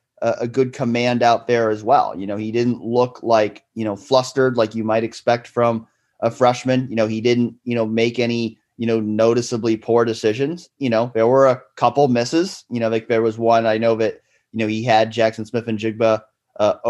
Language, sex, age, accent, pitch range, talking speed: English, male, 30-49, American, 115-135 Hz, 215 wpm